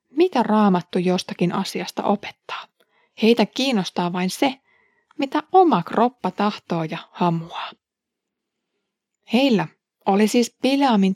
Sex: female